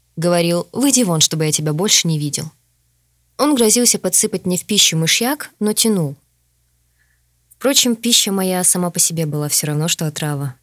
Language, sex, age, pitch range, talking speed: Russian, female, 20-39, 150-200 Hz, 165 wpm